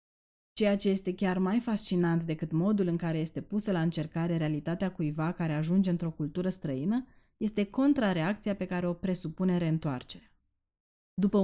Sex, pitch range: female, 165-205 Hz